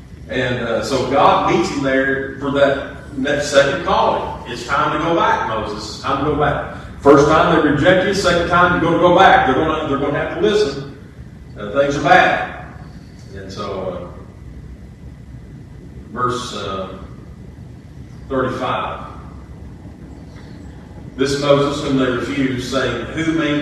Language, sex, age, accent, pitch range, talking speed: English, male, 40-59, American, 125-150 Hz, 160 wpm